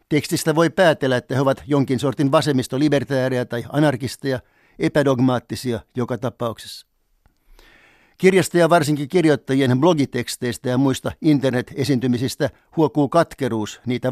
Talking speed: 105 wpm